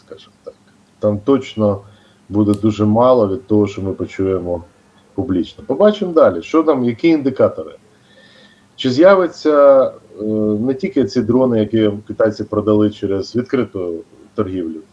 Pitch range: 100-125 Hz